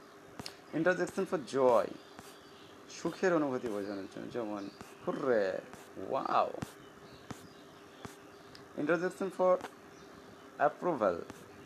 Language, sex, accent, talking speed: Bengali, male, native, 60 wpm